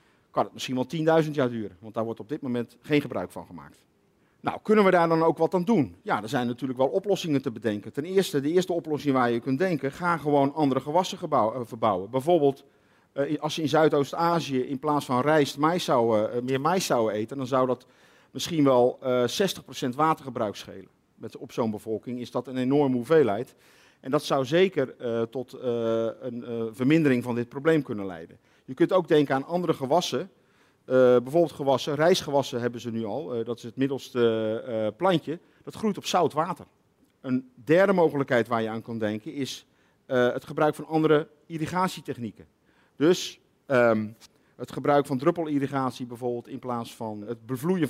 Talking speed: 190 wpm